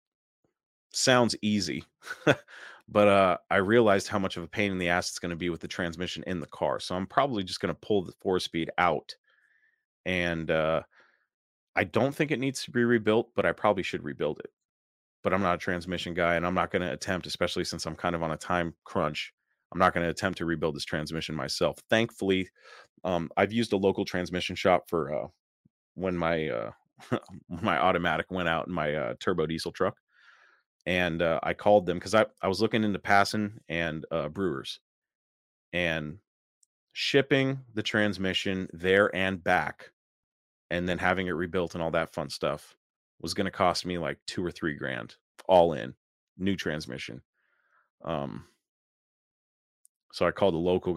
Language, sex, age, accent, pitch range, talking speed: English, male, 30-49, American, 80-100 Hz, 185 wpm